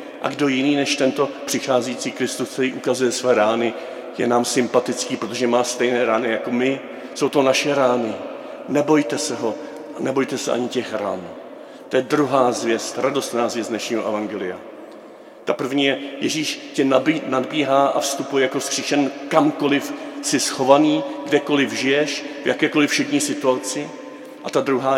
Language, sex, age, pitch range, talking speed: Czech, male, 50-69, 130-165 Hz, 150 wpm